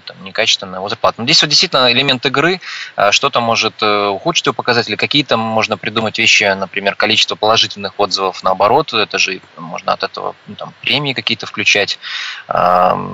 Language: Russian